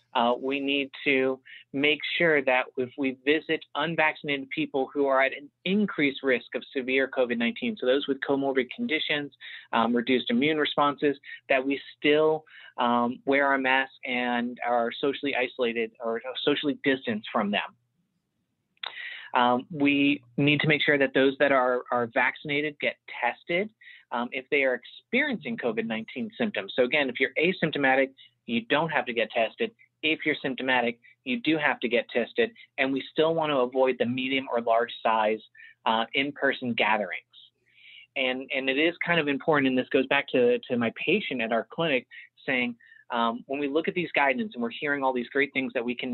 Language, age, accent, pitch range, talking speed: English, 30-49, American, 125-155 Hz, 180 wpm